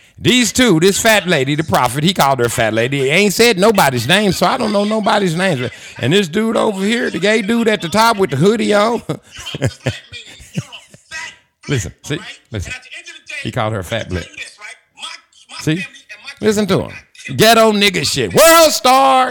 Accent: American